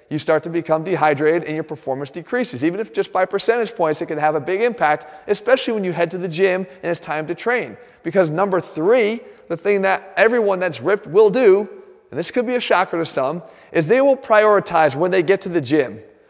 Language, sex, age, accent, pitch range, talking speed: English, male, 30-49, American, 170-225 Hz, 235 wpm